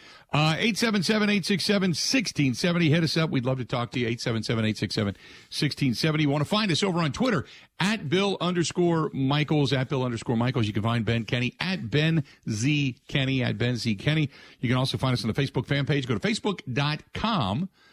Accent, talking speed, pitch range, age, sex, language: American, 185 wpm, 110-145 Hz, 50-69, male, English